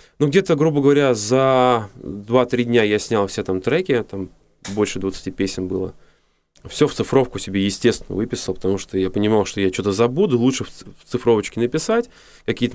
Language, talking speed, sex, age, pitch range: Russian, 170 wpm, male, 20-39, 100-130 Hz